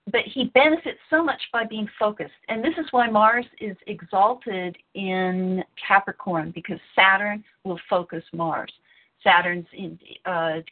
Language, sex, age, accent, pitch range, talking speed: English, female, 50-69, American, 170-220 Hz, 135 wpm